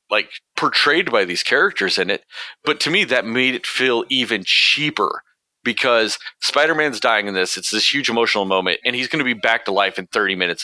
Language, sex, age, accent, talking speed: English, male, 40-59, American, 210 wpm